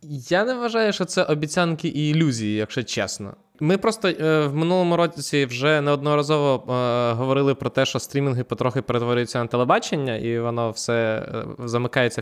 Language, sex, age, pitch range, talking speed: Ukrainian, male, 20-39, 120-145 Hz, 160 wpm